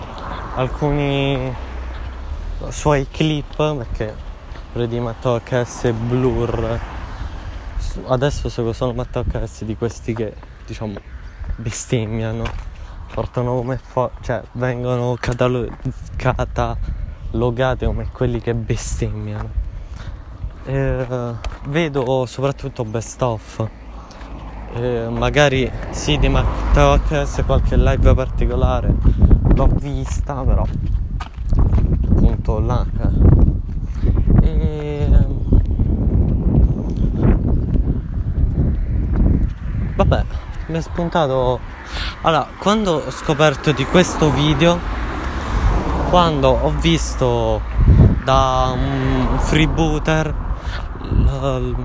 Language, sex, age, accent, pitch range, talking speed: Italian, male, 20-39, native, 90-130 Hz, 80 wpm